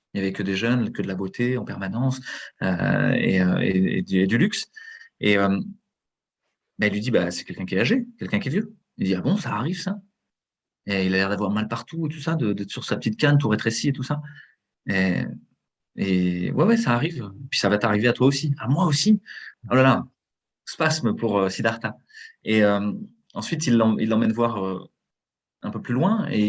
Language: French